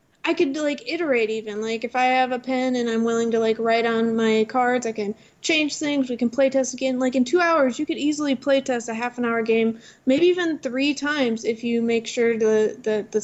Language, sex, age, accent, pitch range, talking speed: English, female, 20-39, American, 235-290 Hz, 245 wpm